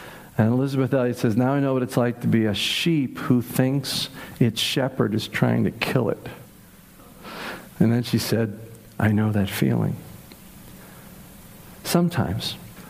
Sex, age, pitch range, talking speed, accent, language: male, 50-69, 120-160 Hz, 145 wpm, American, English